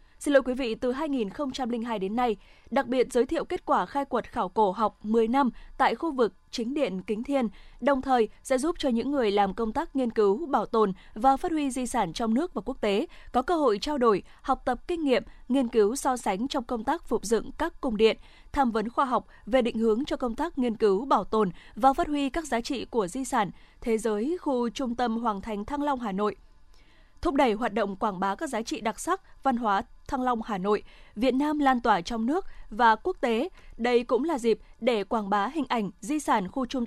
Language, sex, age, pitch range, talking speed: Vietnamese, female, 20-39, 220-280 Hz, 240 wpm